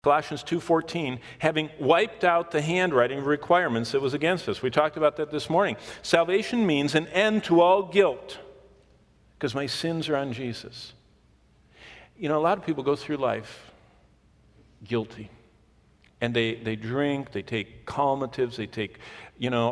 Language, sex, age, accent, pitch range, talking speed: English, male, 50-69, American, 115-160 Hz, 160 wpm